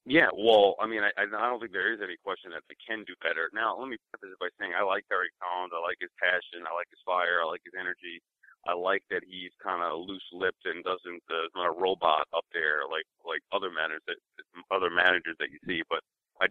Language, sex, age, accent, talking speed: English, male, 40-59, American, 245 wpm